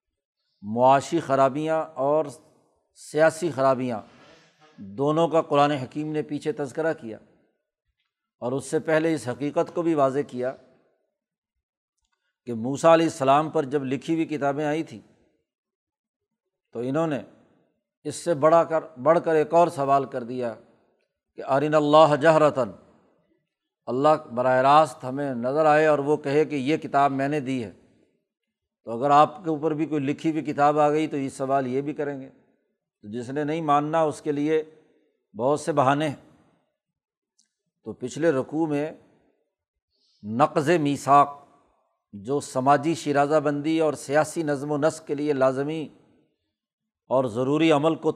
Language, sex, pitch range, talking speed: Urdu, male, 135-160 Hz, 150 wpm